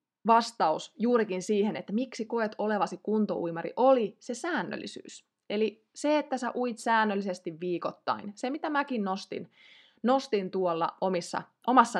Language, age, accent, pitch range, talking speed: Finnish, 20-39, native, 185-250 Hz, 125 wpm